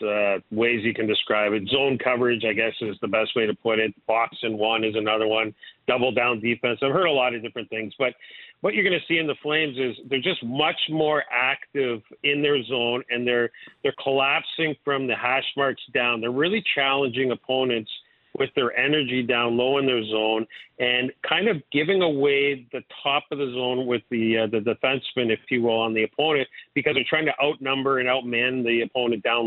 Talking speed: 210 wpm